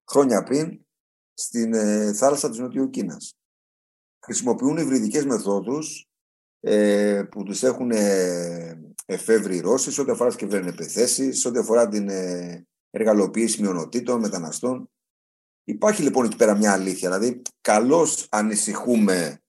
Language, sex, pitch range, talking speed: Greek, male, 90-120 Hz, 115 wpm